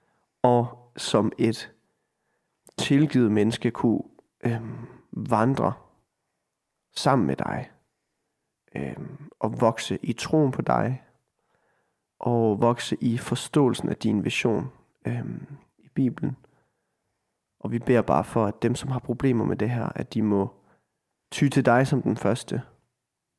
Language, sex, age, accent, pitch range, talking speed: Danish, male, 30-49, native, 110-125 Hz, 120 wpm